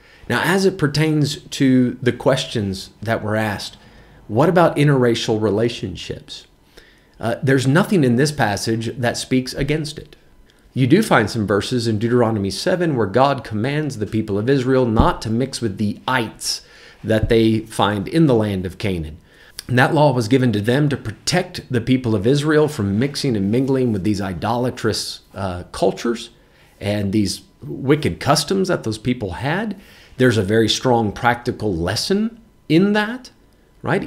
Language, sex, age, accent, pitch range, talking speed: English, male, 40-59, American, 105-135 Hz, 160 wpm